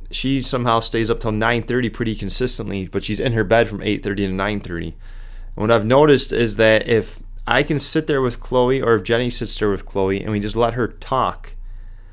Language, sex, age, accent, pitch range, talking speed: English, male, 30-49, American, 100-115 Hz, 215 wpm